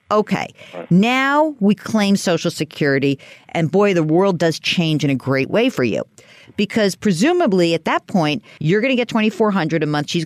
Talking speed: 175 wpm